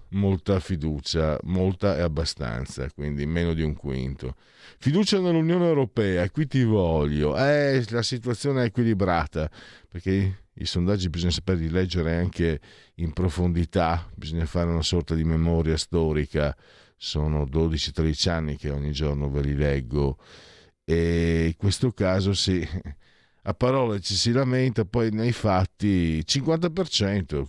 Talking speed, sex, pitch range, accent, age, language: 135 wpm, male, 80-120 Hz, native, 50-69, Italian